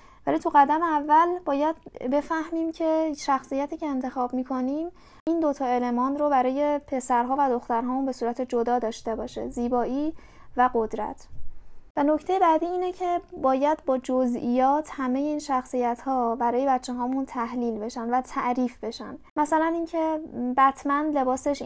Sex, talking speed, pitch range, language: female, 145 wpm, 240-285 Hz, Persian